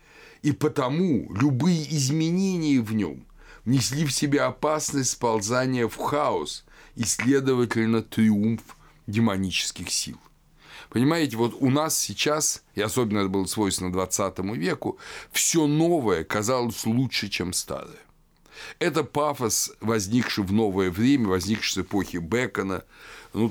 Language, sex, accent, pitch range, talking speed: Russian, male, native, 95-130 Hz, 120 wpm